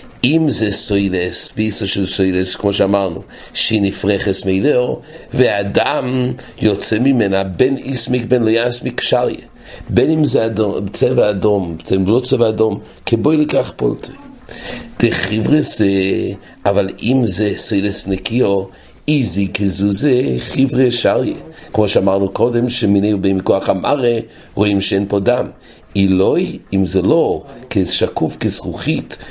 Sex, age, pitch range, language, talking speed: male, 60-79, 100-135 Hz, English, 125 wpm